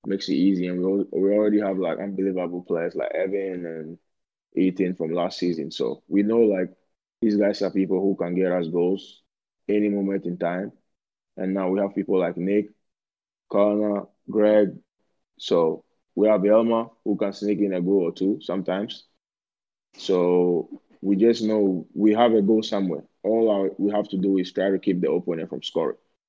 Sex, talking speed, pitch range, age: male, 185 wpm, 90-100 Hz, 20-39